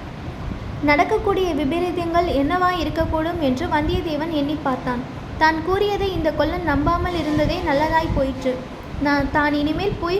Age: 20-39